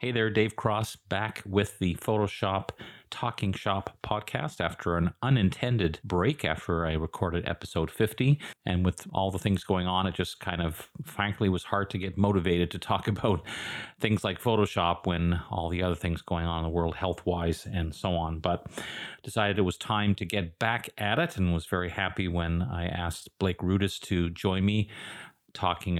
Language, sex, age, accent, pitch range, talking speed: English, male, 40-59, American, 85-105 Hz, 185 wpm